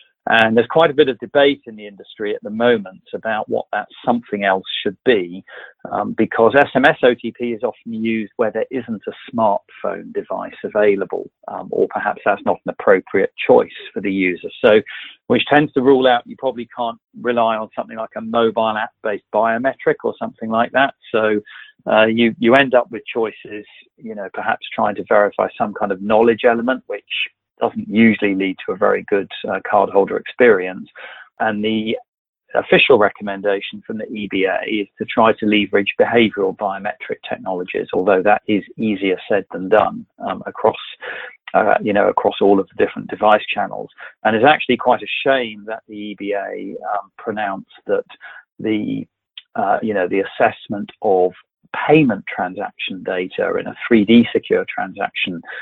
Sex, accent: male, British